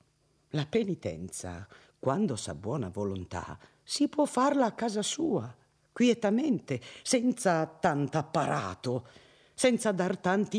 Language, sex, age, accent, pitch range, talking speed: Italian, female, 50-69, native, 145-240 Hz, 110 wpm